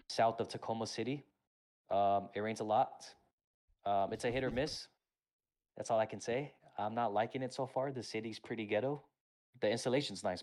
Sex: male